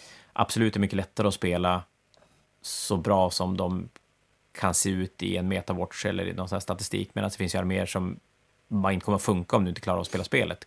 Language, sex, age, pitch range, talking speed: Swedish, male, 30-49, 90-105 Hz, 225 wpm